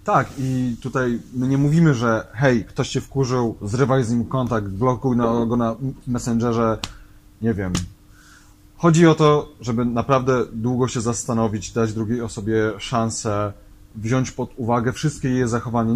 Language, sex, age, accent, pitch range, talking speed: Polish, male, 30-49, native, 110-135 Hz, 145 wpm